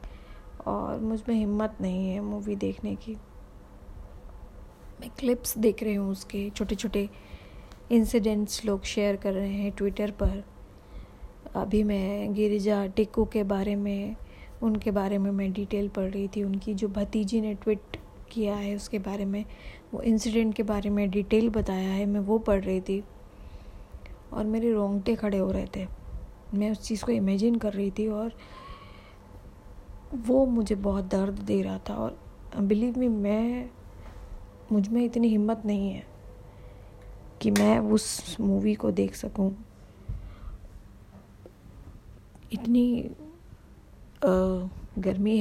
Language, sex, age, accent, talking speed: Hindi, female, 20-39, native, 140 wpm